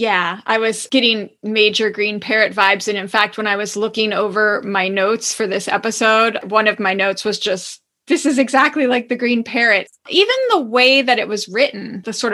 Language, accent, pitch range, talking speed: English, American, 200-250 Hz, 210 wpm